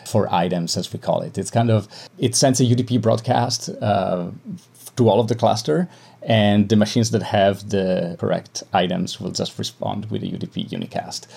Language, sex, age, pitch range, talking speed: English, male, 30-49, 95-115 Hz, 185 wpm